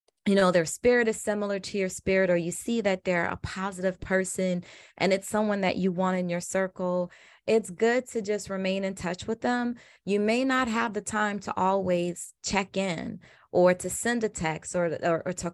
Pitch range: 170-210 Hz